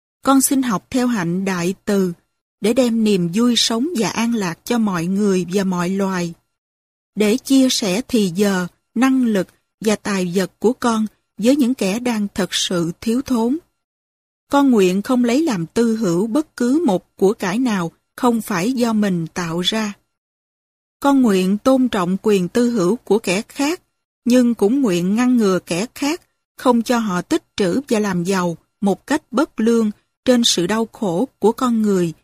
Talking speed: 180 wpm